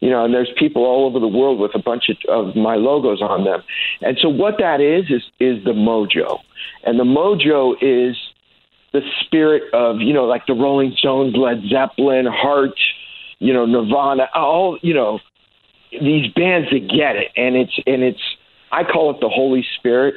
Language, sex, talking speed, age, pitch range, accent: English, male, 190 wpm, 50-69, 125-155 Hz, American